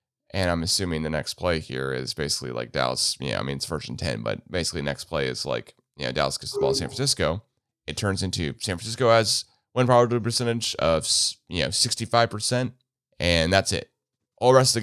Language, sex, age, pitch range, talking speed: English, male, 30-49, 80-110 Hz, 225 wpm